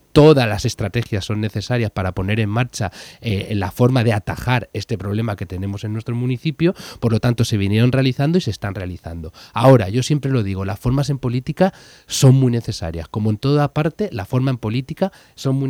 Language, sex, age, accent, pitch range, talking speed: Spanish, male, 30-49, Spanish, 110-140 Hz, 205 wpm